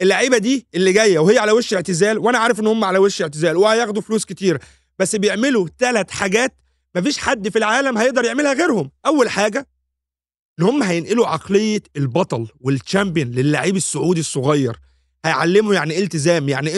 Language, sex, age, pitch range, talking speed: Arabic, male, 30-49, 155-225 Hz, 155 wpm